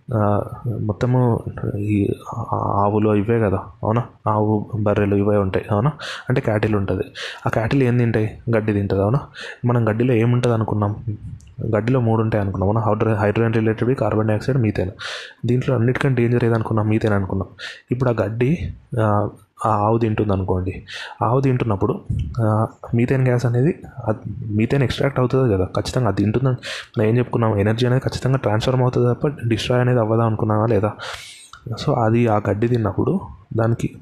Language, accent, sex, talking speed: Telugu, native, male, 145 wpm